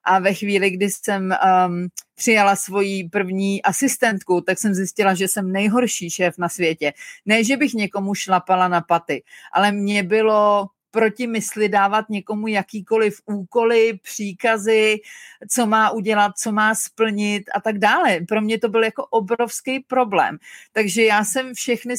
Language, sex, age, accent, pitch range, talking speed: Czech, female, 40-59, native, 200-240 Hz, 155 wpm